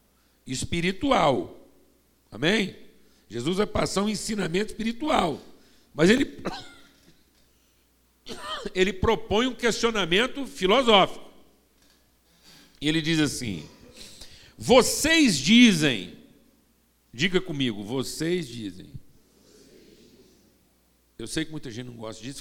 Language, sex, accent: Portuguese, male, Brazilian